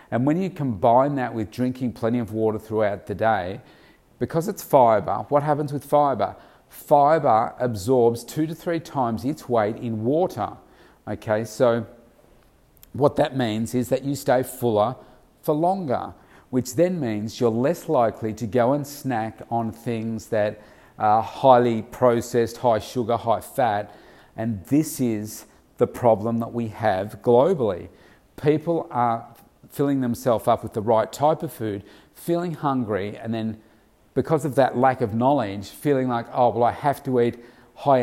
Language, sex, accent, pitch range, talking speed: English, male, Australian, 110-130 Hz, 160 wpm